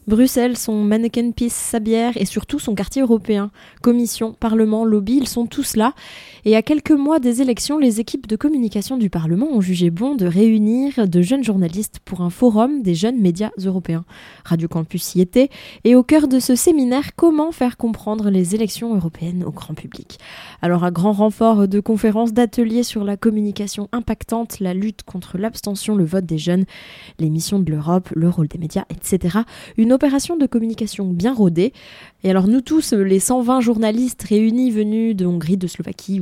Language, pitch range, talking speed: French, 190-240 Hz, 180 wpm